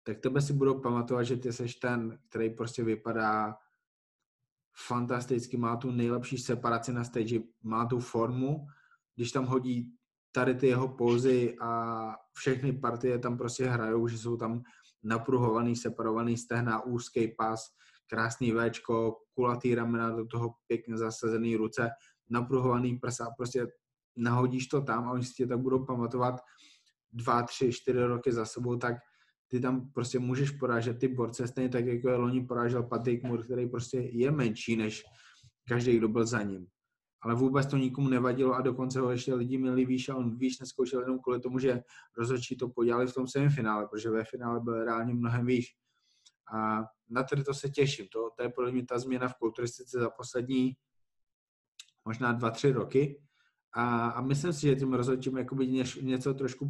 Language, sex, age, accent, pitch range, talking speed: Czech, male, 20-39, native, 115-130 Hz, 170 wpm